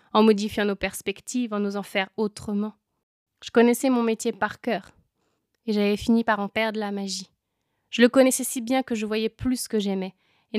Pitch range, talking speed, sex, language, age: 200-235 Hz, 200 wpm, female, French, 20-39